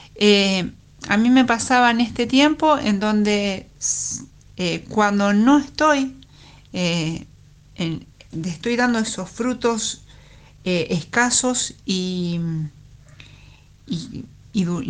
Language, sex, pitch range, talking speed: Spanish, female, 180-245 Hz, 100 wpm